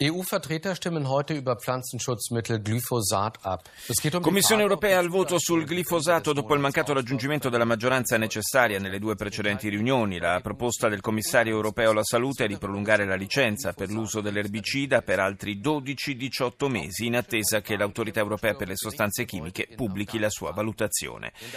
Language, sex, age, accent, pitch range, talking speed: Italian, male, 40-59, native, 105-130 Hz, 140 wpm